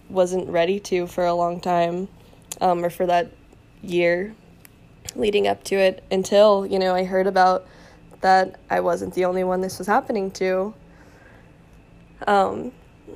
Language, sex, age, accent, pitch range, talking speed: English, female, 10-29, American, 170-200 Hz, 150 wpm